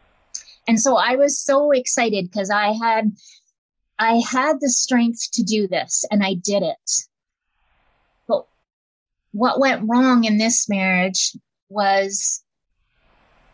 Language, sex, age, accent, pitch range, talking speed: English, female, 30-49, American, 205-250 Hz, 125 wpm